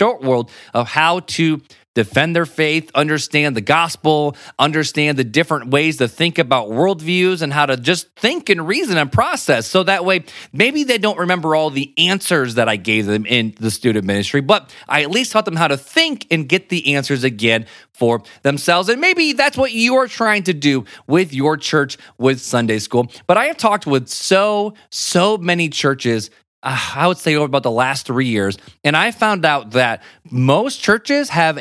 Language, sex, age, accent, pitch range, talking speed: English, male, 30-49, American, 130-195 Hz, 195 wpm